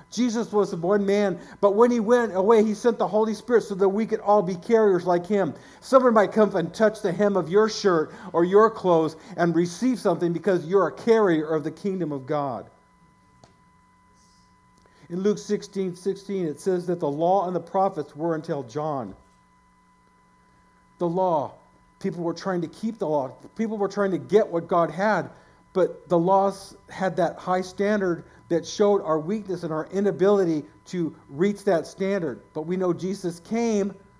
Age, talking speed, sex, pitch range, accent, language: 50-69, 180 wpm, male, 160-200 Hz, American, English